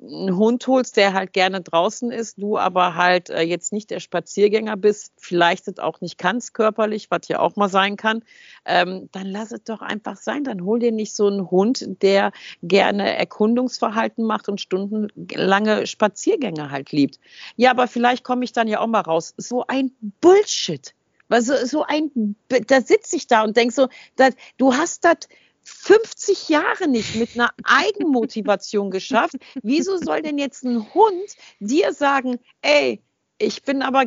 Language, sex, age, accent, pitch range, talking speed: German, female, 50-69, German, 205-270 Hz, 175 wpm